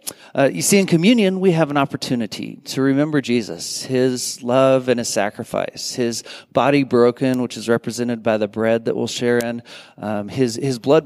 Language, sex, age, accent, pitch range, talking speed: English, male, 40-59, American, 115-140 Hz, 185 wpm